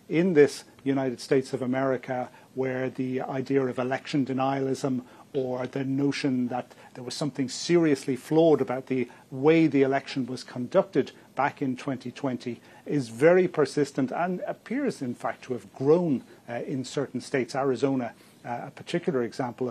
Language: English